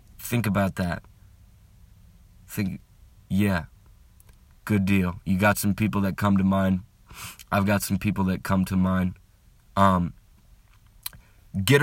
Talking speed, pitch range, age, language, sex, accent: 125 wpm, 100-135 Hz, 30-49, English, male, American